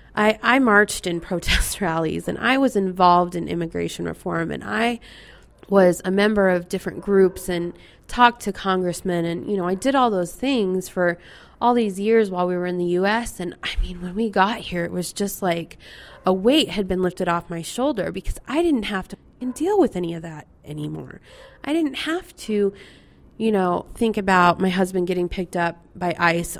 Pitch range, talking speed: 170-205 Hz, 200 wpm